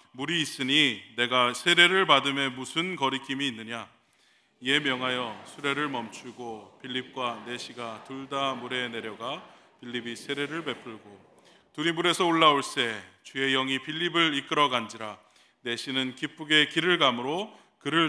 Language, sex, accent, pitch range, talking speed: English, male, Korean, 115-150 Hz, 115 wpm